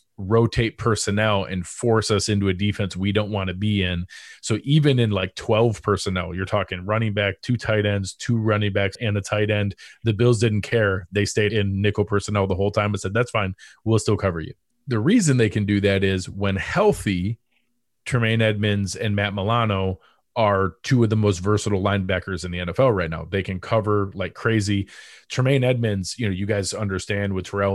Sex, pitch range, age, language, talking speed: male, 95-115 Hz, 20-39, English, 205 wpm